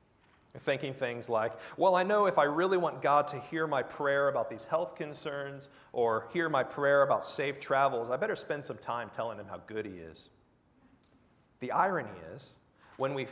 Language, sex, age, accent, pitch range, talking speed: English, male, 40-59, American, 135-190 Hz, 190 wpm